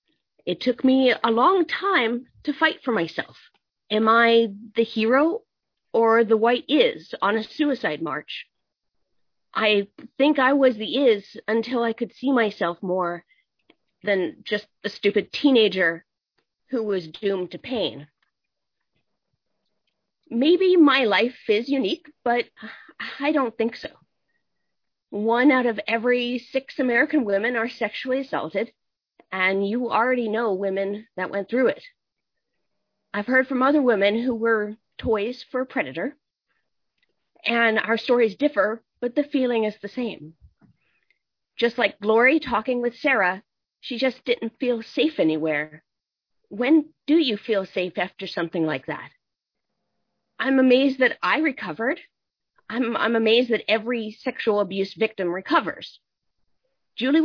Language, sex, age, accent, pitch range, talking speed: English, female, 40-59, American, 205-260 Hz, 135 wpm